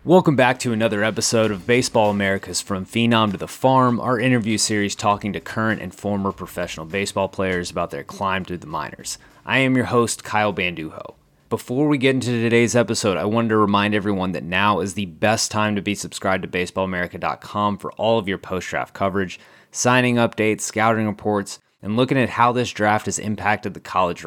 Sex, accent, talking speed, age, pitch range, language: male, American, 195 wpm, 20-39, 95-110 Hz, English